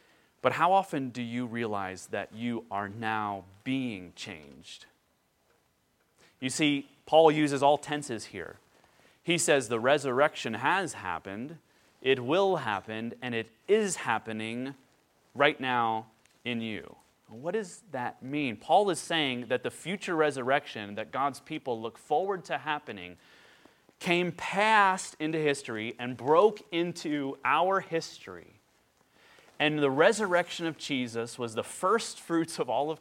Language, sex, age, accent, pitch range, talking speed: English, male, 30-49, American, 115-160 Hz, 135 wpm